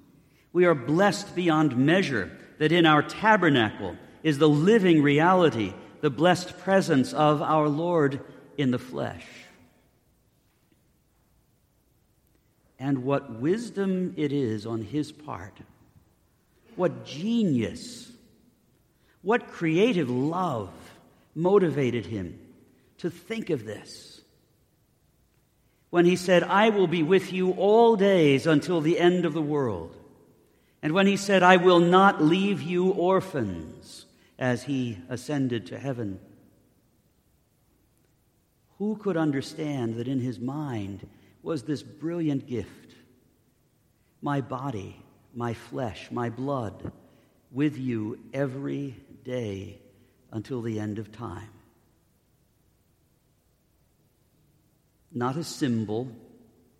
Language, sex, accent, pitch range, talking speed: English, male, American, 120-175 Hz, 105 wpm